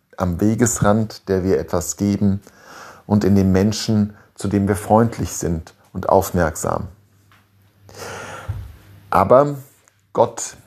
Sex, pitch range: male, 95-110 Hz